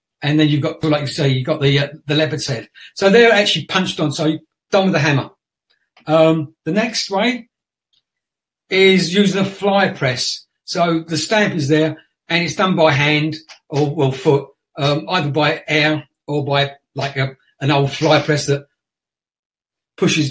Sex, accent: male, British